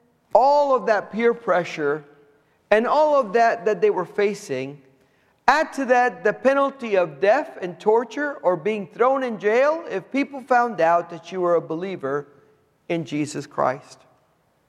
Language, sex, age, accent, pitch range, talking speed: English, male, 50-69, American, 170-245 Hz, 160 wpm